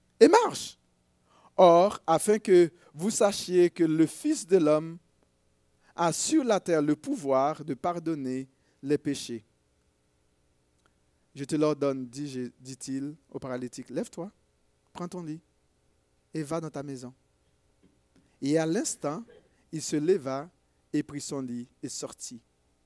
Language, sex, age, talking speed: French, male, 50-69, 130 wpm